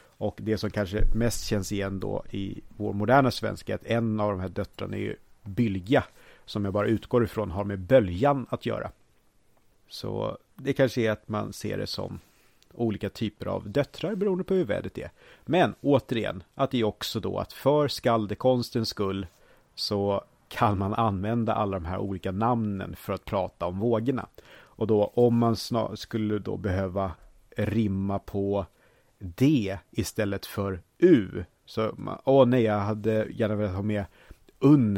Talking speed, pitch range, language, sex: 170 wpm, 100-120 Hz, Swedish, male